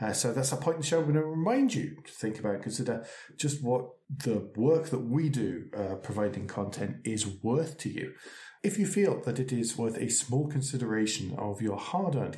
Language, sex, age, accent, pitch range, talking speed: English, male, 40-59, British, 110-150 Hz, 220 wpm